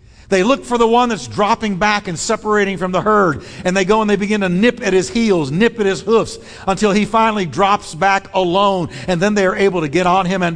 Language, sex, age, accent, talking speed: English, male, 50-69, American, 250 wpm